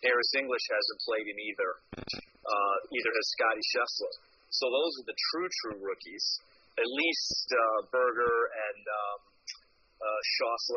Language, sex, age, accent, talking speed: English, male, 30-49, American, 135 wpm